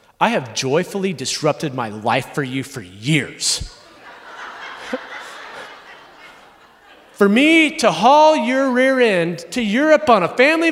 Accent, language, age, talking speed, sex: American, English, 30-49, 125 wpm, male